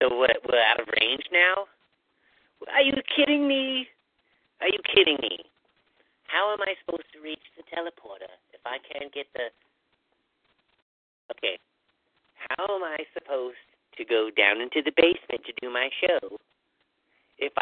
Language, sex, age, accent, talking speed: English, male, 40-59, American, 150 wpm